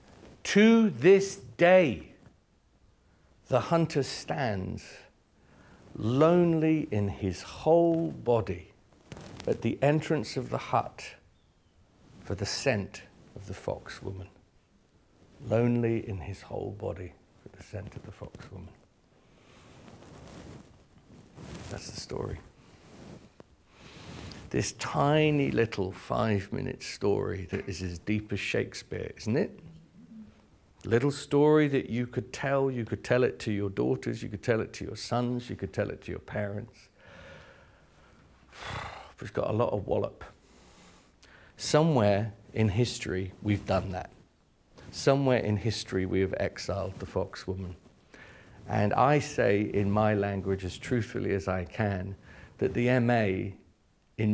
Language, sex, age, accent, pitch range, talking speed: English, male, 50-69, British, 95-125 Hz, 130 wpm